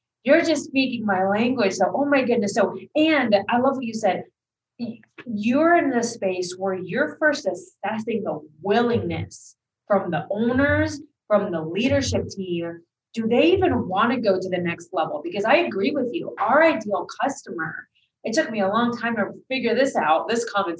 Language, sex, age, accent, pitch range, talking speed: English, female, 30-49, American, 190-270 Hz, 180 wpm